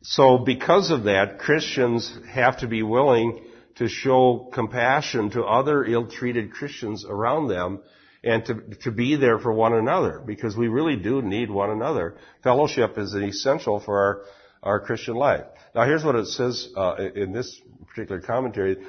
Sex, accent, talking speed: male, American, 165 wpm